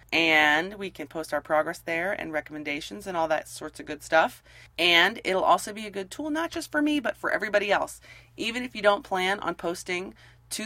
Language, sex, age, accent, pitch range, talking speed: English, female, 30-49, American, 145-195 Hz, 220 wpm